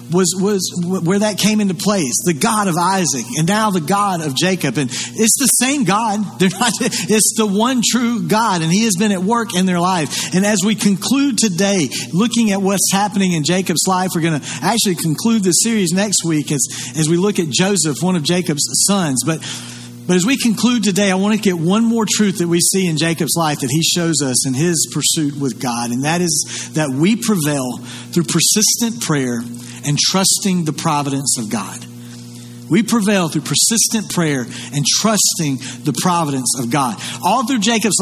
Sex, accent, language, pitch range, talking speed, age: male, American, English, 150-200 Hz, 200 wpm, 40-59